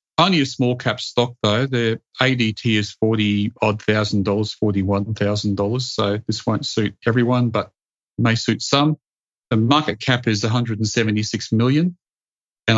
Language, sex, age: English, male, 40-59